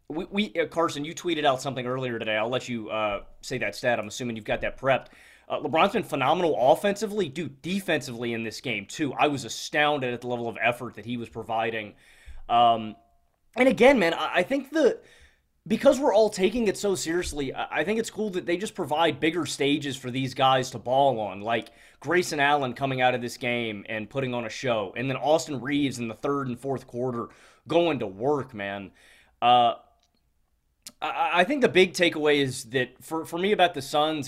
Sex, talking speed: male, 210 wpm